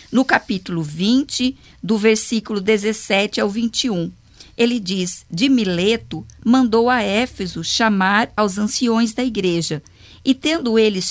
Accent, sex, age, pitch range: Brazilian, female, 50-69, 185-245 Hz